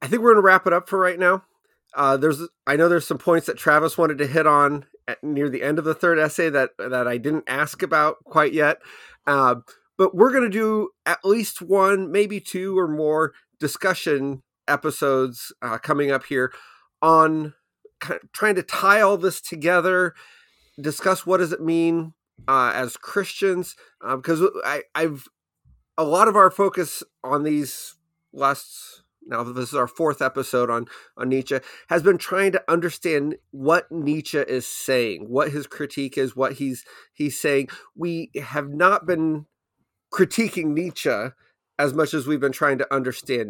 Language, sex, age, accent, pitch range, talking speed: English, male, 30-49, American, 145-185 Hz, 175 wpm